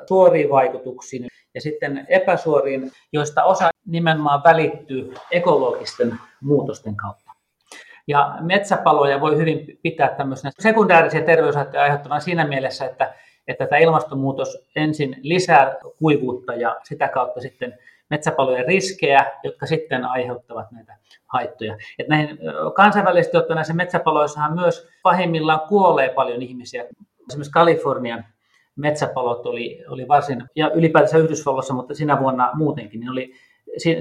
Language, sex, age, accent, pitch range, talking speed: Finnish, male, 30-49, native, 135-170 Hz, 115 wpm